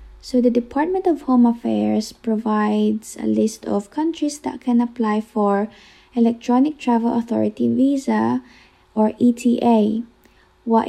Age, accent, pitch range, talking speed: 20-39, Filipino, 225-285 Hz, 120 wpm